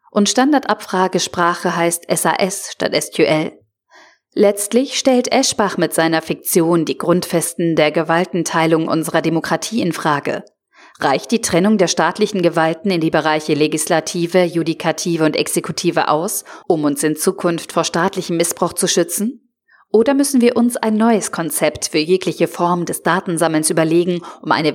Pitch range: 165-215 Hz